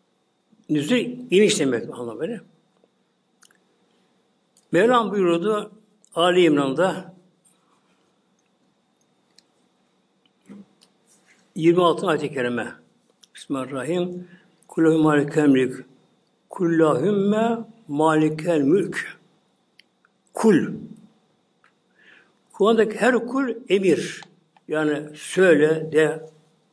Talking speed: 60 wpm